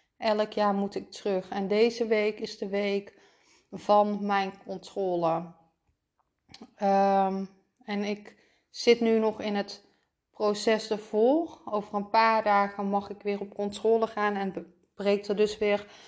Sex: female